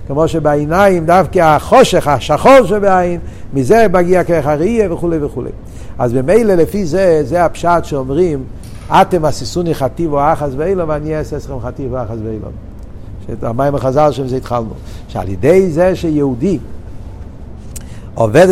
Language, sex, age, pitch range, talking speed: Hebrew, male, 60-79, 140-190 Hz, 135 wpm